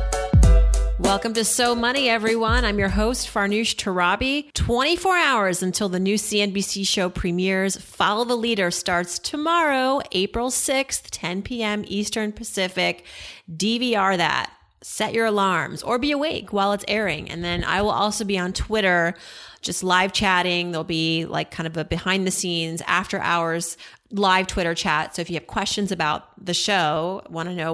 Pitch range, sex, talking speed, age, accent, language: 175-230 Hz, female, 165 wpm, 30-49, American, English